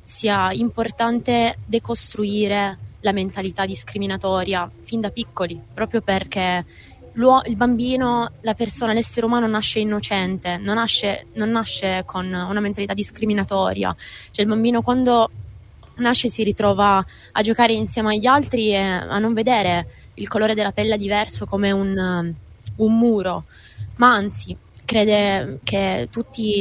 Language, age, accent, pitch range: Italian, 20-39, native, 190-230 Hz